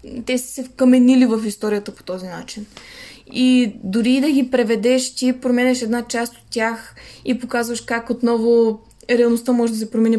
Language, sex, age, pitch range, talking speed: Bulgarian, female, 20-39, 225-260 Hz, 170 wpm